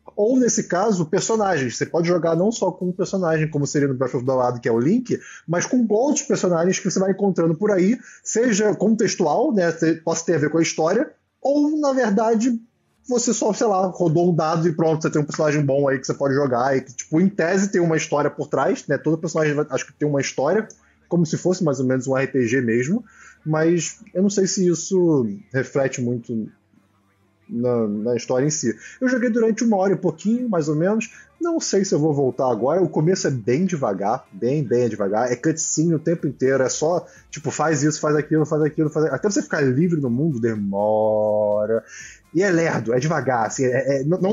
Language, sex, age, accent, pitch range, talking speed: Portuguese, male, 20-39, Brazilian, 135-190 Hz, 220 wpm